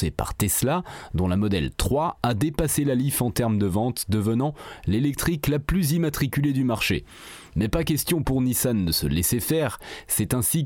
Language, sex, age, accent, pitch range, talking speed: French, male, 30-49, French, 100-140 Hz, 180 wpm